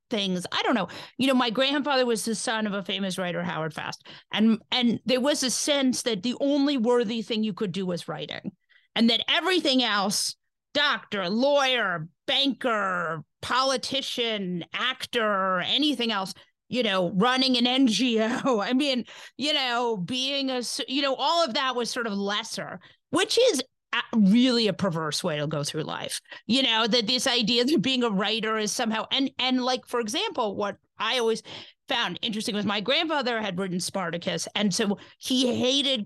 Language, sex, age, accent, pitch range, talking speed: English, female, 40-59, American, 210-265 Hz, 175 wpm